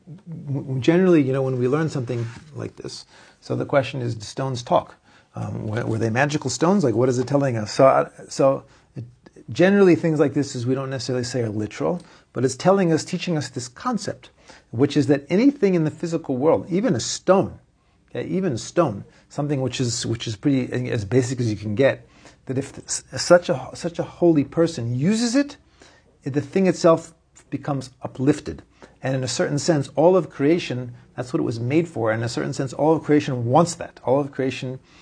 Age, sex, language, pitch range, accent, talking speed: 40-59, male, English, 125-160 Hz, American, 205 wpm